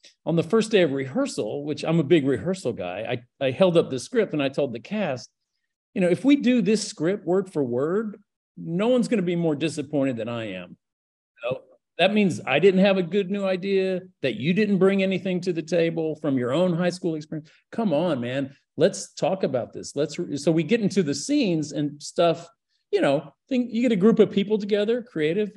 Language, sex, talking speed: English, male, 225 wpm